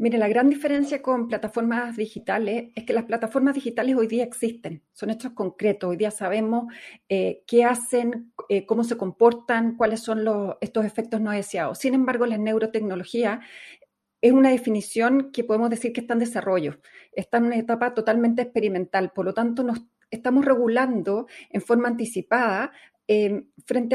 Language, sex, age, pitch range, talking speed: Spanish, female, 40-59, 215-245 Hz, 165 wpm